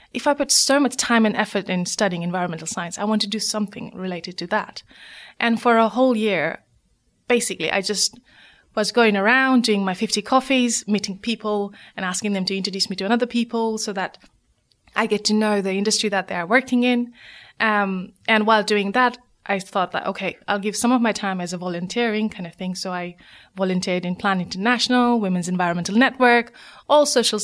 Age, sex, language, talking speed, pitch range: 20-39, female, English, 200 wpm, 185-235 Hz